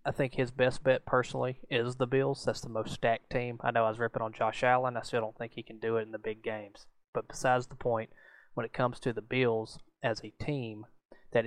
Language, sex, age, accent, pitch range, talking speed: English, male, 20-39, American, 115-125 Hz, 250 wpm